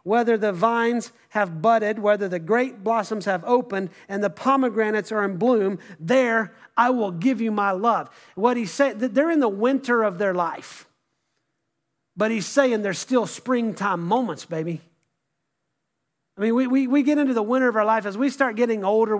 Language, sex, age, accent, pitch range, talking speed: English, male, 40-59, American, 185-235 Hz, 185 wpm